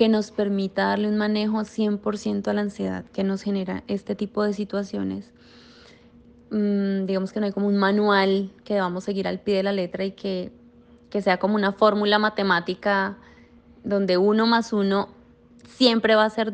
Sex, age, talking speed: female, 20-39, 180 wpm